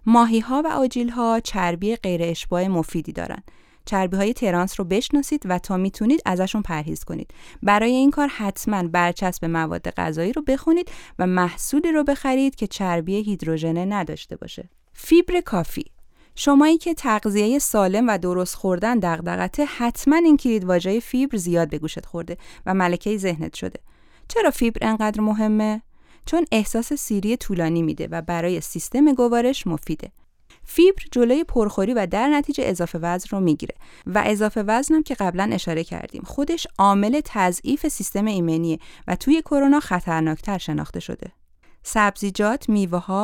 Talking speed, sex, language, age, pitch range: 145 wpm, female, Persian, 30-49, 180-260 Hz